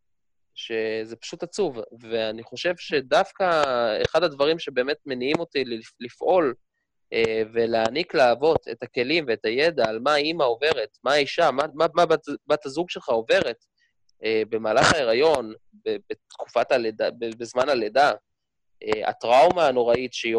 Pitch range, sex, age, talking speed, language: 115-180 Hz, male, 20-39, 120 wpm, Hebrew